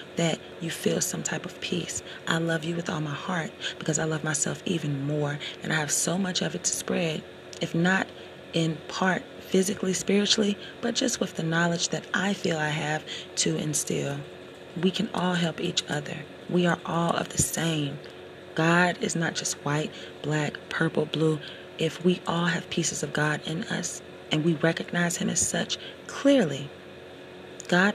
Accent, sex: American, female